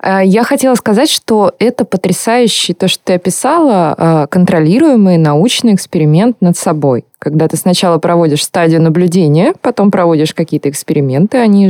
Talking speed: 135 wpm